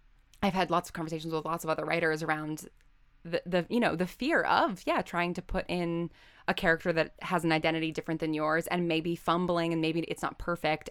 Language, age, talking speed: English, 10-29, 220 wpm